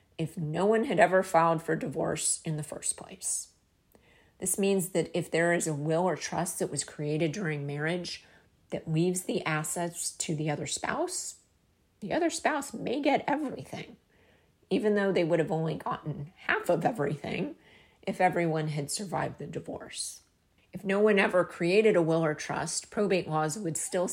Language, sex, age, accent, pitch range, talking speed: English, female, 40-59, American, 155-190 Hz, 175 wpm